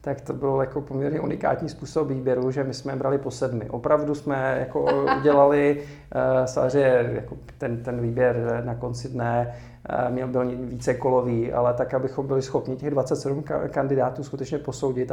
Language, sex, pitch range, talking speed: Czech, male, 125-145 Hz, 160 wpm